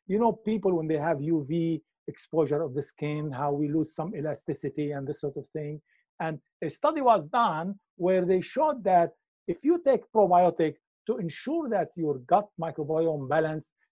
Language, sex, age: English, male, 50-69